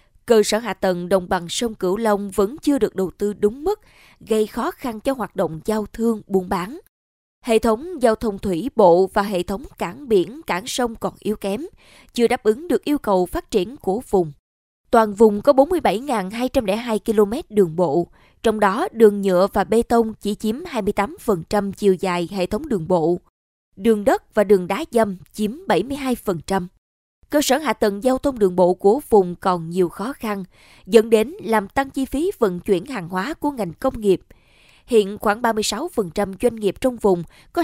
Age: 20-39